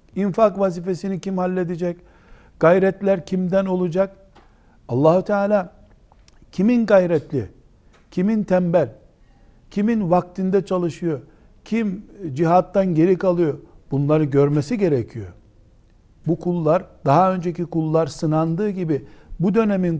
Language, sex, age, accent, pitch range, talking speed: Turkish, male, 60-79, native, 150-195 Hz, 95 wpm